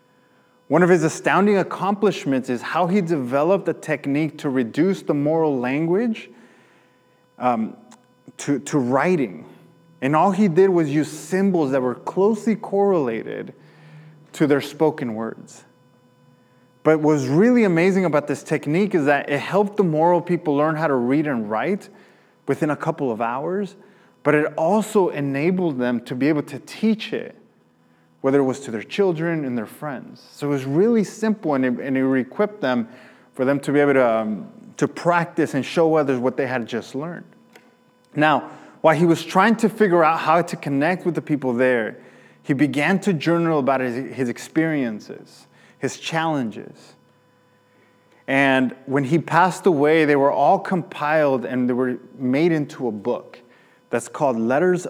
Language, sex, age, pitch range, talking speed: English, male, 20-39, 135-180 Hz, 165 wpm